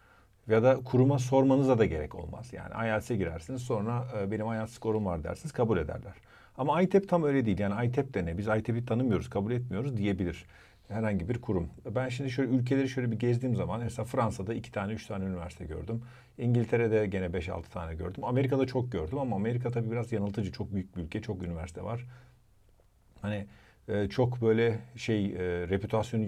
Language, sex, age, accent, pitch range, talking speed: Turkish, male, 50-69, native, 95-125 Hz, 180 wpm